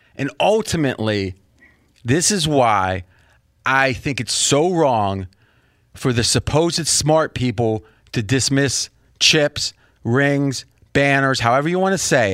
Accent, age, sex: American, 30-49, male